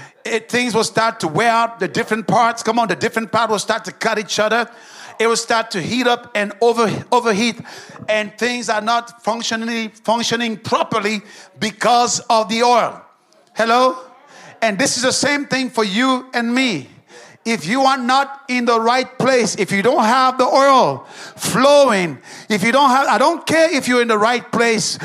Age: 50-69